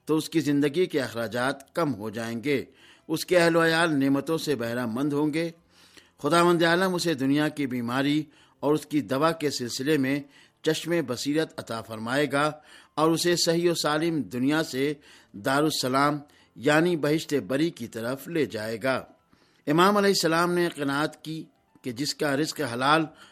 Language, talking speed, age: Urdu, 165 wpm, 50-69